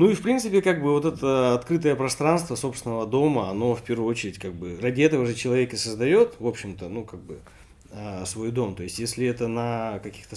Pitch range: 100-135 Hz